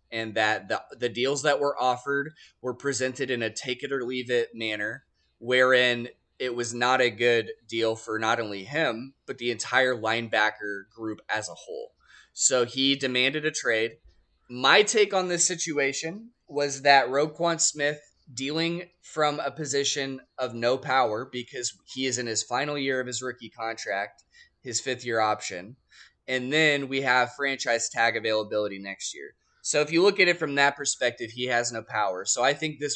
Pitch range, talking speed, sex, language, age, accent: 115-140 Hz, 170 wpm, male, English, 20-39, American